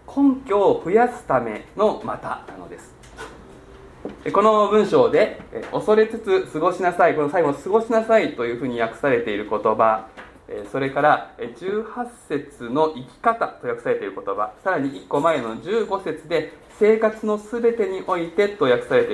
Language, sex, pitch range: Japanese, male, 135-220 Hz